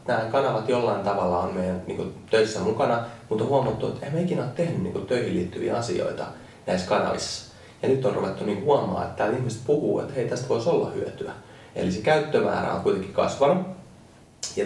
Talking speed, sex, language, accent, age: 195 wpm, male, Finnish, native, 20-39